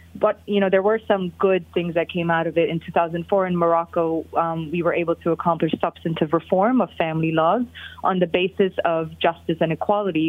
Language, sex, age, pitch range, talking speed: English, female, 20-39, 165-195 Hz, 205 wpm